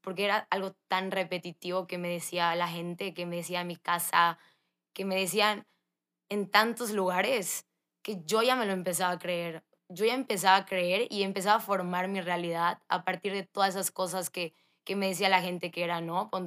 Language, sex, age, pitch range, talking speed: Spanish, female, 10-29, 175-205 Hz, 205 wpm